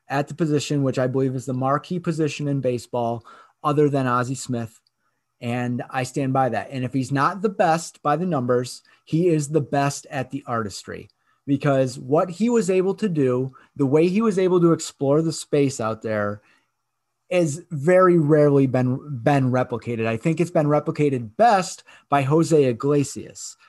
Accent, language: American, English